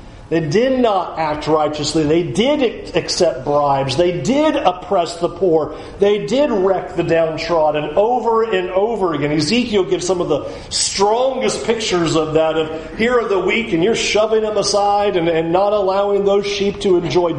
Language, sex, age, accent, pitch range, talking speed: English, male, 40-59, American, 155-225 Hz, 175 wpm